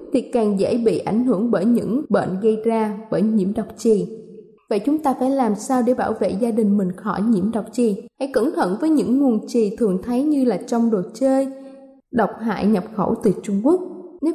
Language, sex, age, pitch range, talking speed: Vietnamese, female, 20-39, 205-265 Hz, 220 wpm